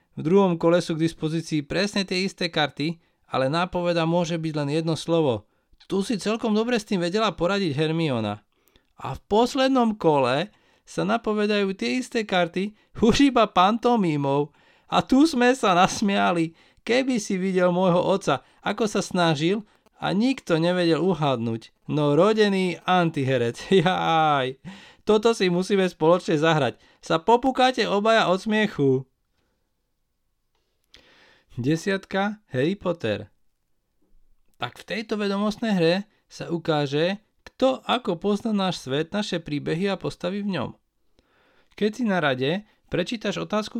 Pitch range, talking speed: 165-210 Hz, 130 wpm